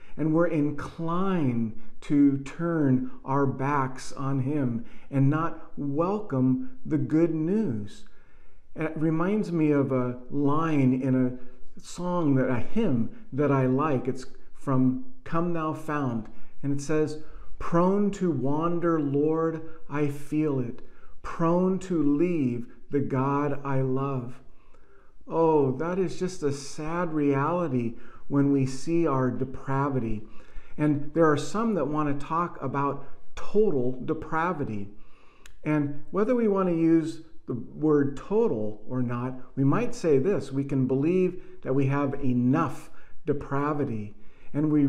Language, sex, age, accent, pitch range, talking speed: English, male, 40-59, American, 130-165 Hz, 135 wpm